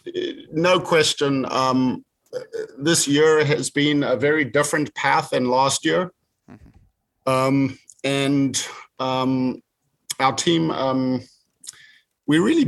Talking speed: 105 wpm